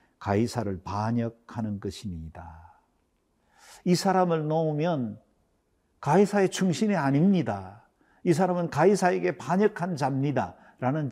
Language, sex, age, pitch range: Korean, male, 50-69, 115-160 Hz